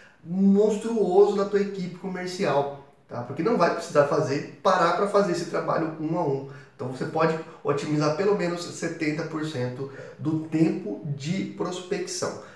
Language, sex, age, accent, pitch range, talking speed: Portuguese, male, 20-39, Brazilian, 135-170 Hz, 145 wpm